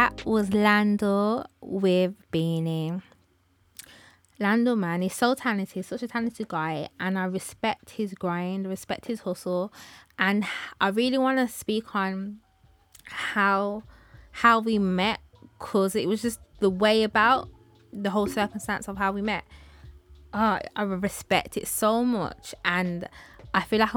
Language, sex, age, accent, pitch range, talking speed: English, female, 20-39, British, 180-215 Hz, 145 wpm